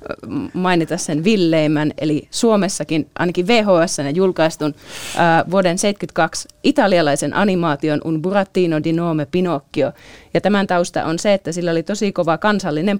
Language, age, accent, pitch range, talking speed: Finnish, 30-49, native, 150-185 Hz, 135 wpm